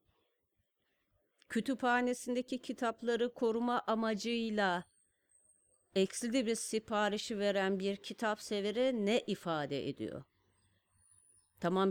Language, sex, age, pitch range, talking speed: Turkish, female, 40-59, 175-235 Hz, 70 wpm